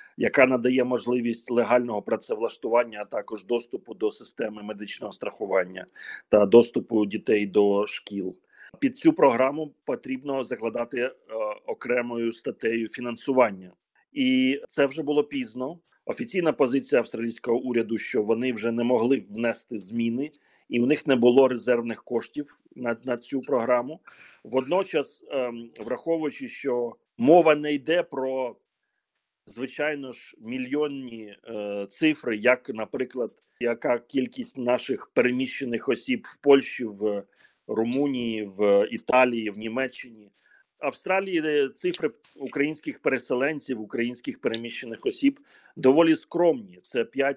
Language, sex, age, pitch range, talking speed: Ukrainian, male, 40-59, 115-155 Hz, 115 wpm